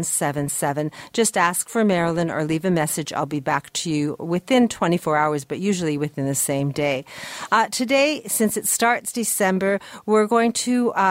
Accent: American